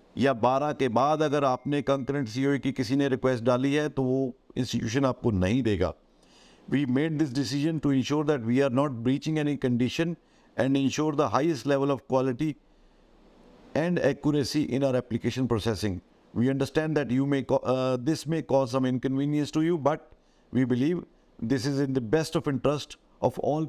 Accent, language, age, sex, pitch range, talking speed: native, Hindi, 50-69, male, 125-145 Hz, 175 wpm